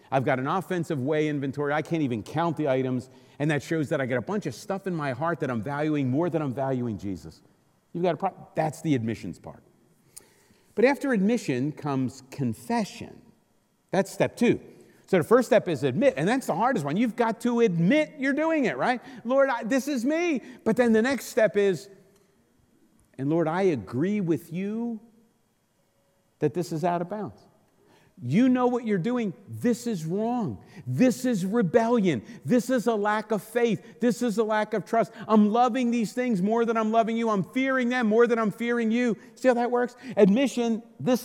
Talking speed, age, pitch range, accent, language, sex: 200 wpm, 50-69, 165-245 Hz, American, English, male